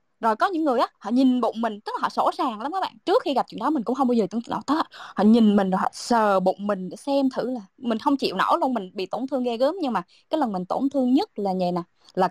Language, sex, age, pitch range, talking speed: Vietnamese, female, 20-39, 205-275 Hz, 320 wpm